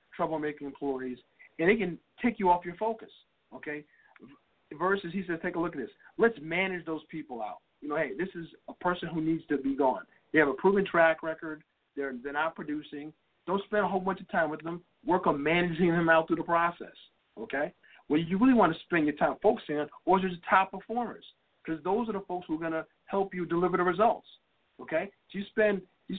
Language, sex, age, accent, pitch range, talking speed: English, male, 50-69, American, 155-190 Hz, 220 wpm